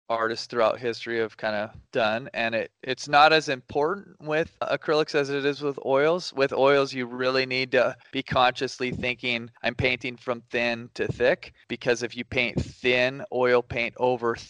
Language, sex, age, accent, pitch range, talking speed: English, male, 20-39, American, 120-150 Hz, 180 wpm